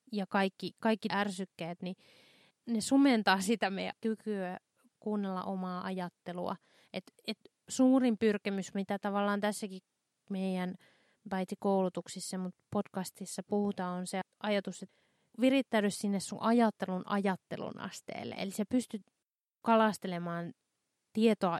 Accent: native